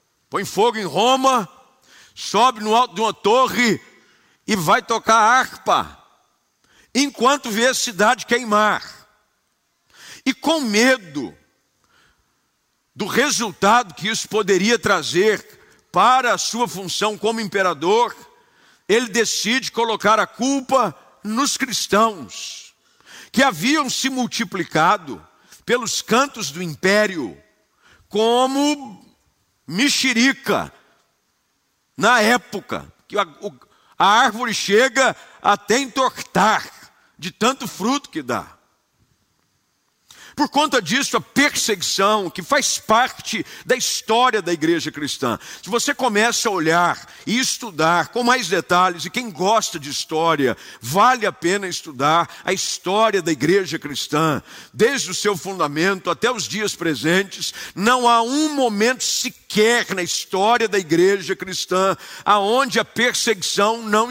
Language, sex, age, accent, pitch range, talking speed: Portuguese, male, 50-69, Brazilian, 185-250 Hz, 115 wpm